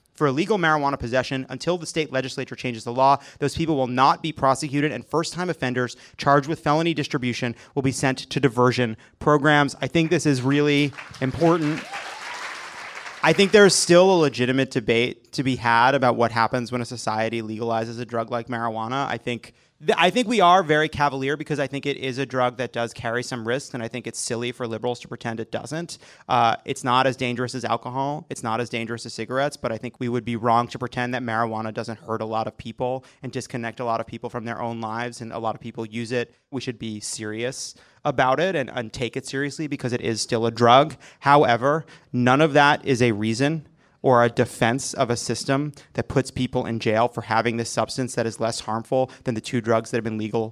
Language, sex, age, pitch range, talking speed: English, male, 30-49, 115-135 Hz, 220 wpm